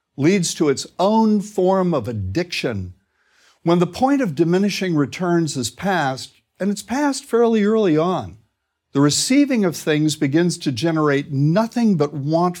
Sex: male